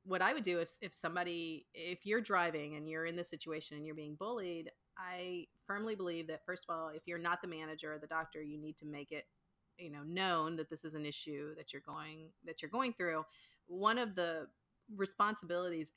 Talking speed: 220 wpm